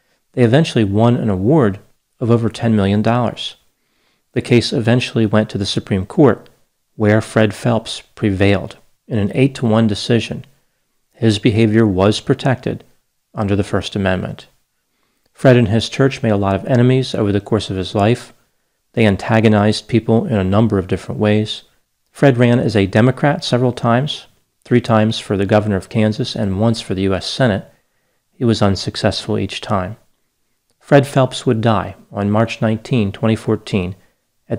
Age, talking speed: 40-59, 160 wpm